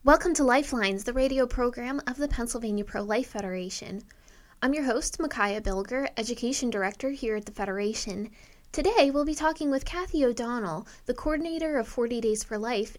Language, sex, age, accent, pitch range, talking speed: English, female, 20-39, American, 205-260 Hz, 170 wpm